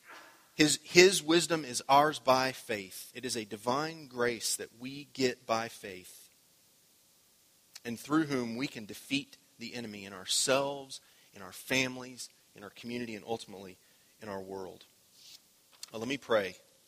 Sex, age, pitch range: male, 30-49, 115-140 Hz